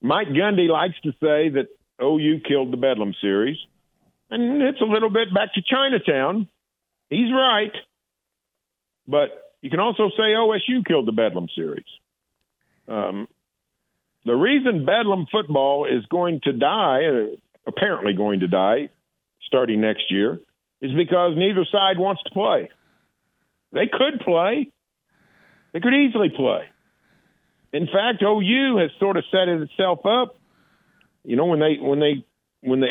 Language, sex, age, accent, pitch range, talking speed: English, male, 50-69, American, 140-220 Hz, 140 wpm